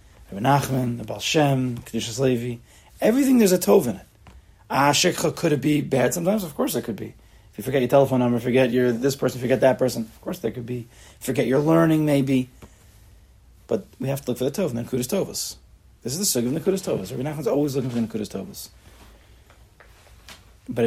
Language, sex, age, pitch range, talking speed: English, male, 30-49, 110-145 Hz, 200 wpm